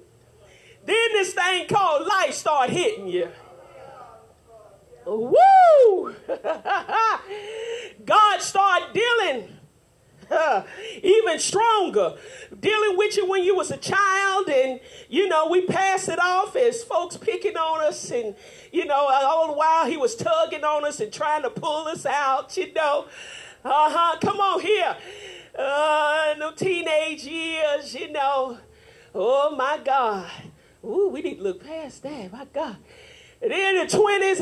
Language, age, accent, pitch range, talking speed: English, 40-59, American, 300-420 Hz, 140 wpm